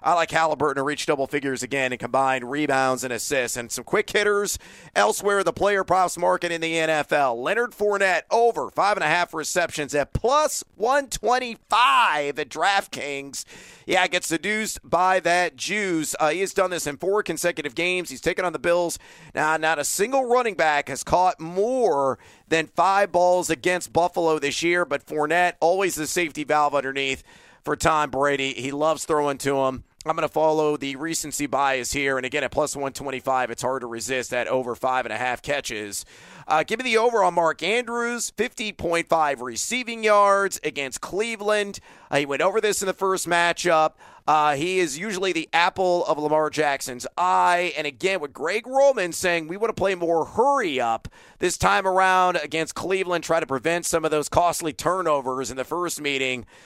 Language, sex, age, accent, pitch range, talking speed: English, male, 40-59, American, 145-185 Hz, 185 wpm